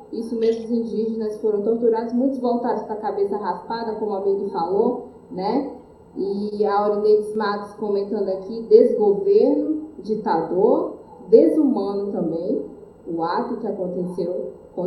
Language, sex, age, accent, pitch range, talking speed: Portuguese, female, 20-39, Brazilian, 200-275 Hz, 130 wpm